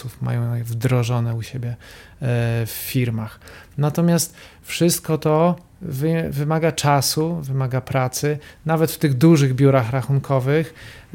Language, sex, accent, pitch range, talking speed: Polish, male, native, 125-160 Hz, 100 wpm